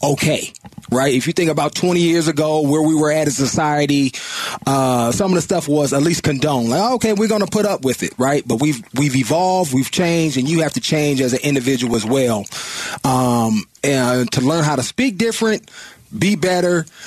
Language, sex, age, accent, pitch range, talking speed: English, male, 30-49, American, 125-160 Hz, 215 wpm